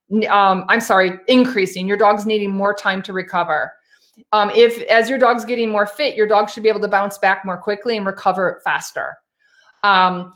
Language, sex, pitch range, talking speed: English, female, 185-220 Hz, 190 wpm